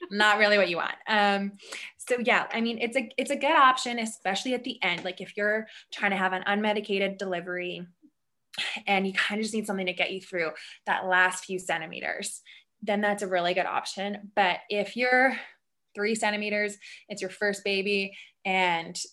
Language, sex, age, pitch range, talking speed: English, female, 20-39, 185-225 Hz, 190 wpm